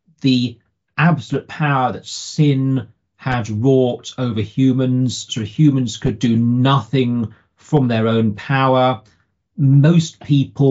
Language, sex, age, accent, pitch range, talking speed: English, male, 40-59, British, 115-150 Hz, 110 wpm